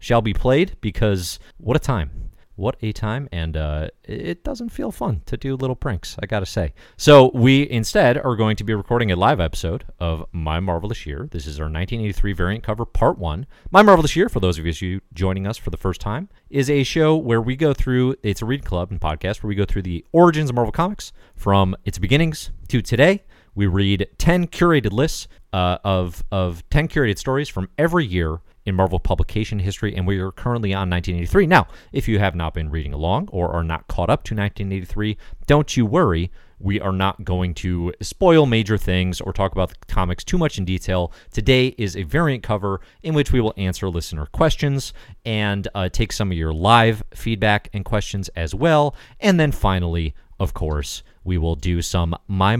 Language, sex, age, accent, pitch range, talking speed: English, male, 30-49, American, 90-125 Hz, 205 wpm